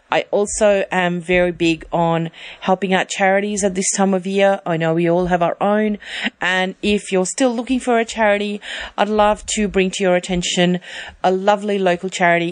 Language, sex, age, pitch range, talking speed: English, female, 40-59, 165-190 Hz, 190 wpm